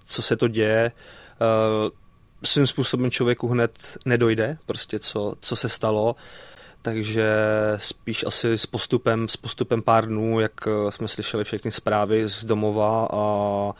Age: 20-39